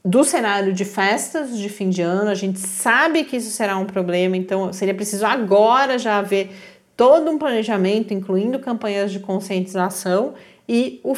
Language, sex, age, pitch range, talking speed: Portuguese, female, 40-59, 180-225 Hz, 165 wpm